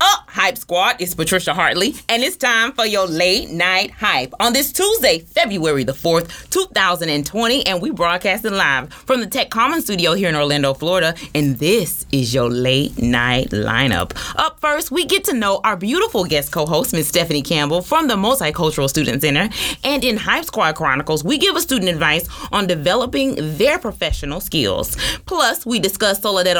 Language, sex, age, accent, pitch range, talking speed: English, female, 30-49, American, 155-225 Hz, 180 wpm